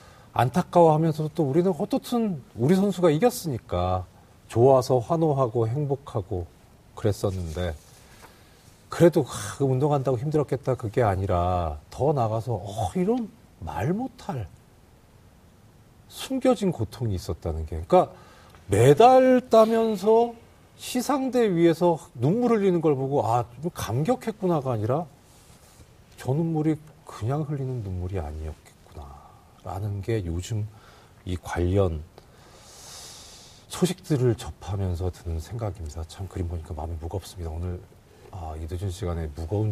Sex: male